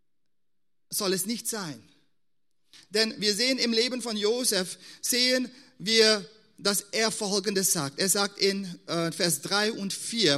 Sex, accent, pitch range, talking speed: male, German, 165-240 Hz, 140 wpm